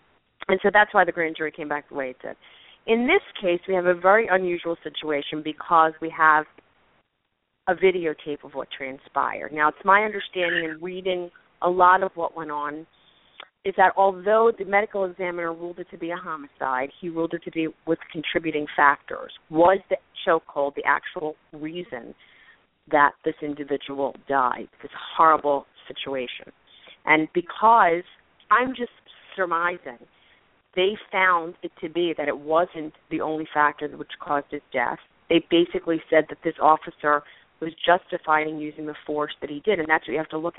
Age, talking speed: 40-59, 175 wpm